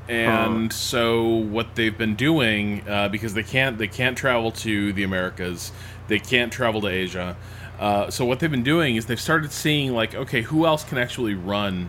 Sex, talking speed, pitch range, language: male, 190 wpm, 100-120 Hz, English